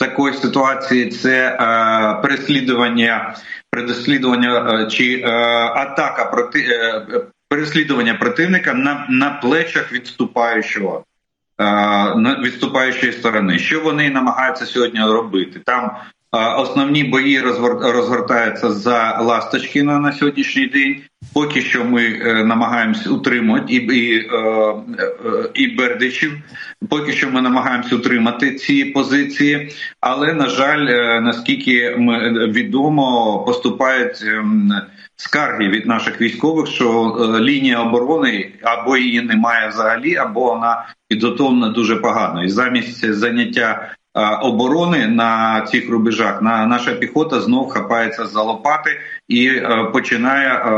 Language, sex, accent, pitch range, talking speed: Russian, male, native, 115-140 Hz, 105 wpm